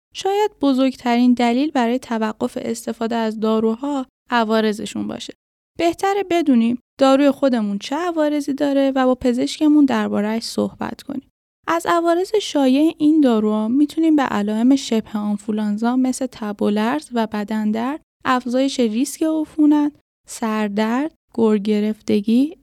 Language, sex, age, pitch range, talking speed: Persian, female, 10-29, 225-280 Hz, 115 wpm